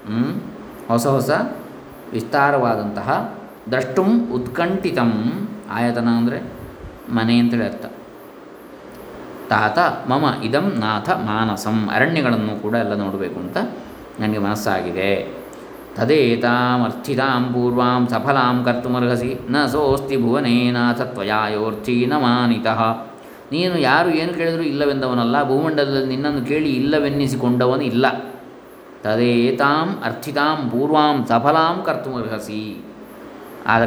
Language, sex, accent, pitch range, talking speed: Kannada, male, native, 115-140 Hz, 100 wpm